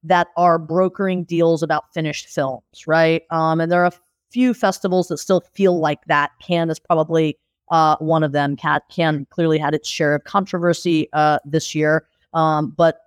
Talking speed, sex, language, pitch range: 180 wpm, female, English, 155-175 Hz